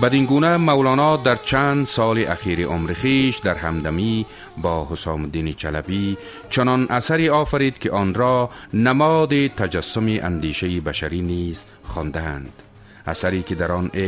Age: 40-59